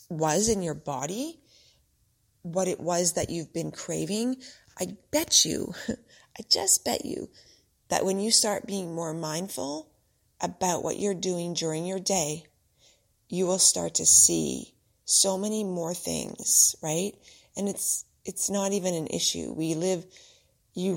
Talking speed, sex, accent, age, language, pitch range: 150 wpm, female, American, 30-49, English, 160-190 Hz